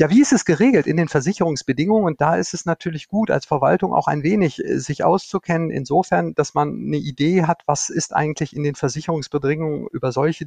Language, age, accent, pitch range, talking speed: German, 50-69, German, 135-180 Hz, 200 wpm